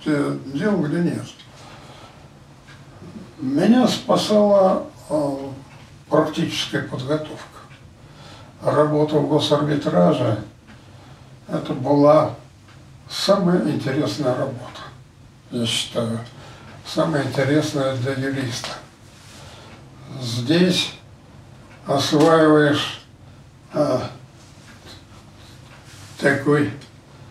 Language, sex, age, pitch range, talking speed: Russian, male, 60-79, 120-150 Hz, 55 wpm